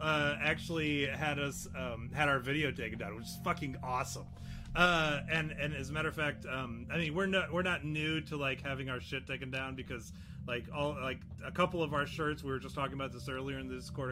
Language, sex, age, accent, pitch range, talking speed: English, male, 30-49, American, 130-155 Hz, 240 wpm